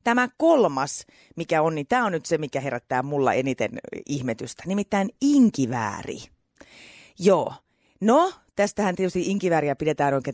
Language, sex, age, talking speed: Finnish, female, 30-49, 135 wpm